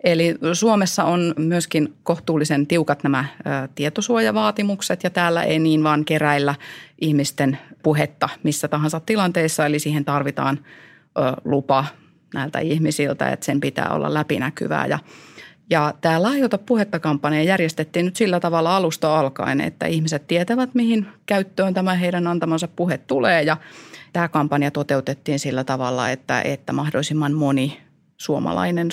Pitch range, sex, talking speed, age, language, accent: 145-175 Hz, female, 135 wpm, 30-49, Finnish, native